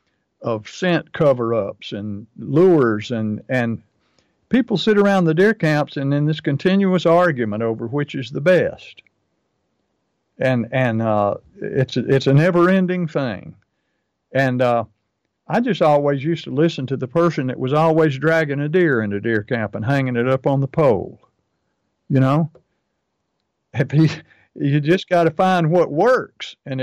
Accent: American